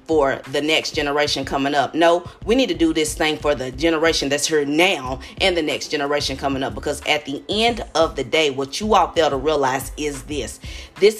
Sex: female